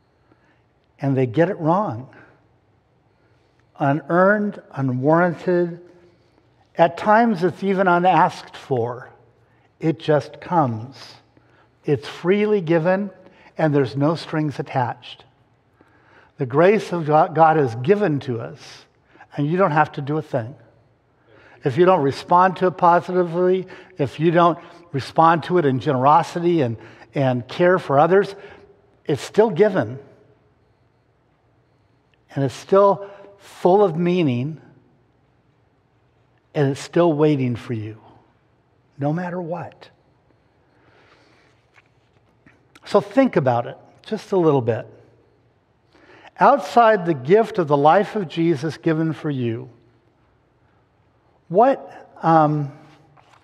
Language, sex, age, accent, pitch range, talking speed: English, male, 60-79, American, 130-180 Hz, 110 wpm